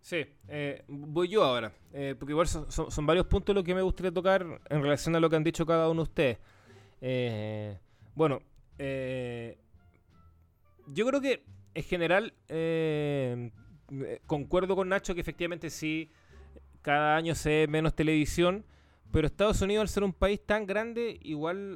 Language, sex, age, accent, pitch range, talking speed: Spanish, male, 20-39, Argentinian, 115-175 Hz, 165 wpm